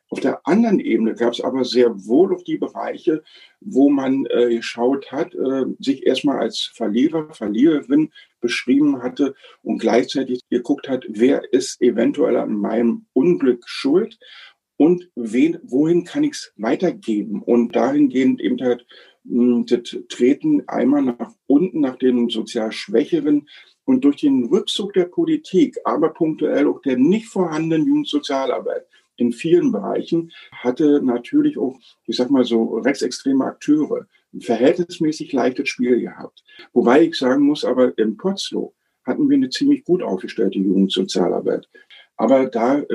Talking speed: 145 wpm